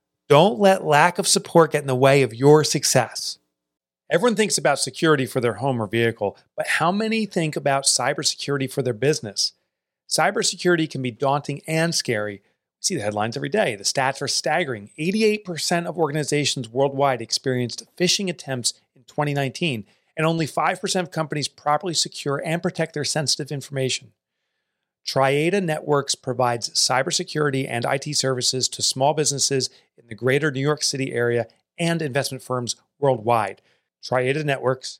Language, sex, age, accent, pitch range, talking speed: English, male, 40-59, American, 125-155 Hz, 150 wpm